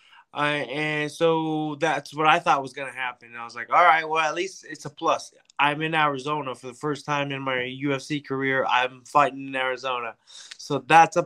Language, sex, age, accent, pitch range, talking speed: English, male, 20-39, American, 135-160 Hz, 215 wpm